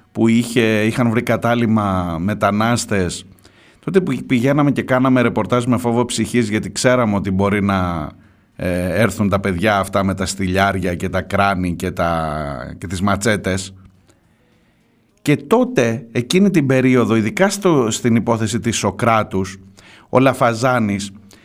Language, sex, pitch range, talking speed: Greek, male, 100-135 Hz, 135 wpm